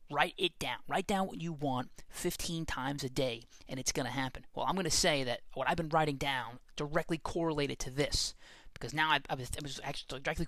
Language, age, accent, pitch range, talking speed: English, 20-39, American, 130-160 Hz, 235 wpm